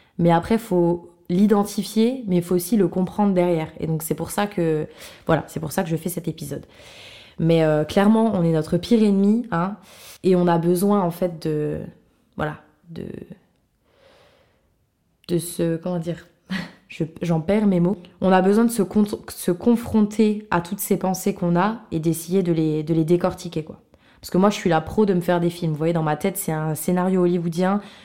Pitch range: 165-205 Hz